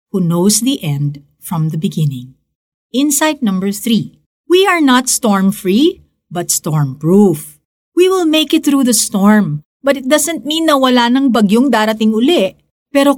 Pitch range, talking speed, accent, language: 180-265 Hz, 155 wpm, native, Filipino